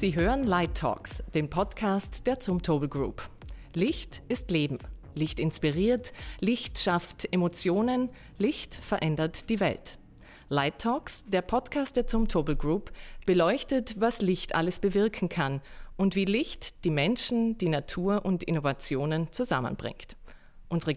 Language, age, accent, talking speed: German, 30-49, German, 135 wpm